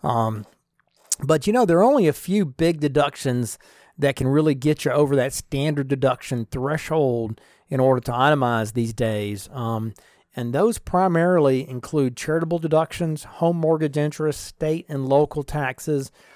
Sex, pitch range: male, 125-155 Hz